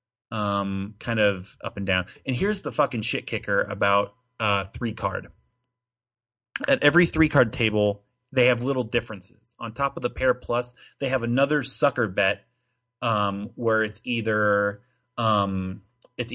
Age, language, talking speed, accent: 30-49, English, 155 wpm, American